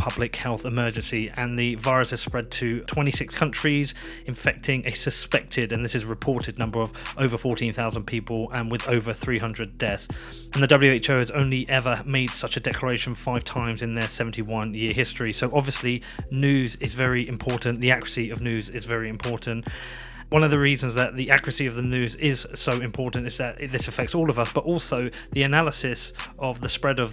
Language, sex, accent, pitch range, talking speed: English, male, British, 120-135 Hz, 190 wpm